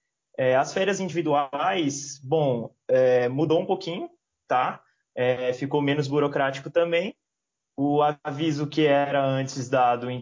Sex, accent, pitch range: male, Brazilian, 135-170 Hz